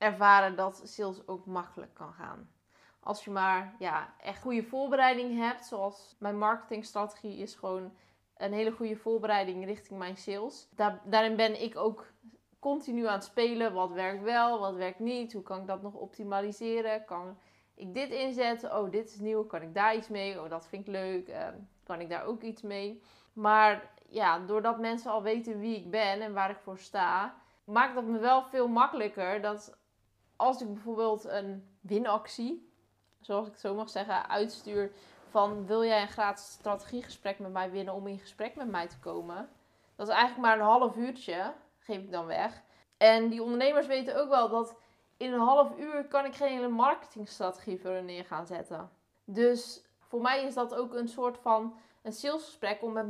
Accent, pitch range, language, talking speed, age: Dutch, 200-235 Hz, Dutch, 190 wpm, 20-39